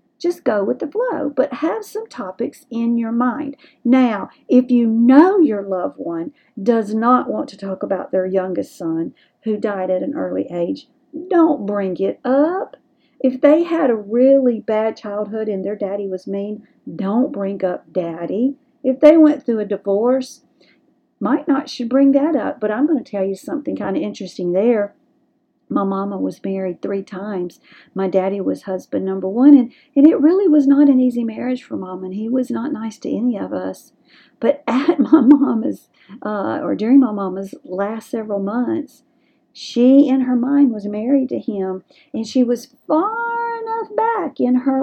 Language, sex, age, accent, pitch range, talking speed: English, female, 50-69, American, 200-285 Hz, 185 wpm